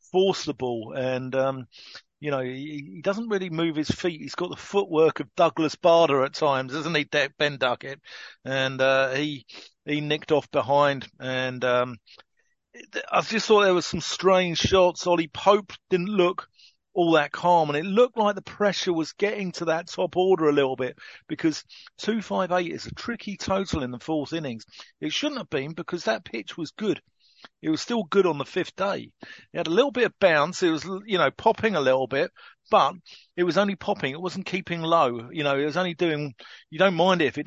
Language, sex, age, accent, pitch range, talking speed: English, male, 50-69, British, 135-180 Hz, 210 wpm